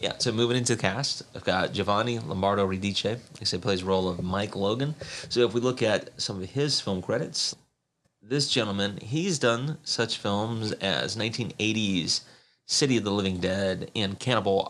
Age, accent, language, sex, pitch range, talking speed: 30-49, American, English, male, 100-125 Hz, 170 wpm